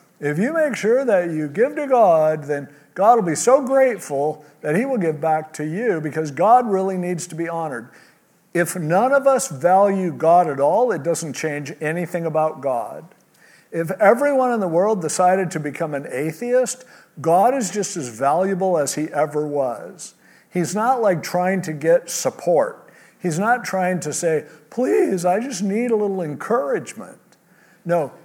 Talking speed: 175 wpm